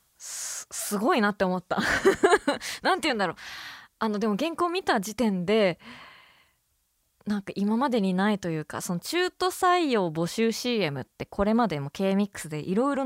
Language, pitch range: Japanese, 175-230 Hz